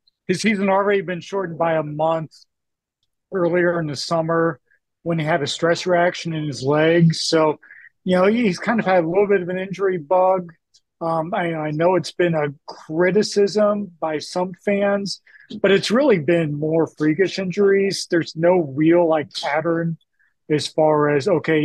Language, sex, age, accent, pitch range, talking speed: English, male, 40-59, American, 155-185 Hz, 170 wpm